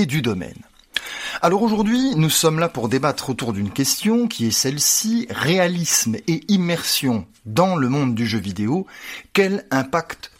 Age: 30-49